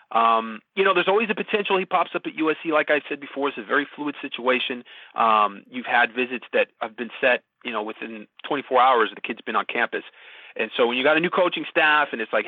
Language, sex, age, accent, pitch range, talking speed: English, male, 30-49, American, 115-150 Hz, 250 wpm